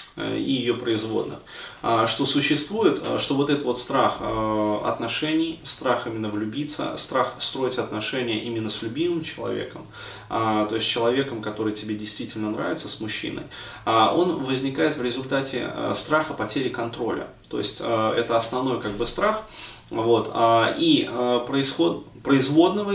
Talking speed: 125 wpm